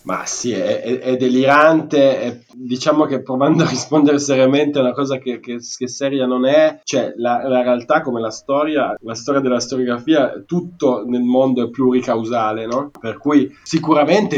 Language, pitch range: Italian, 120-140 Hz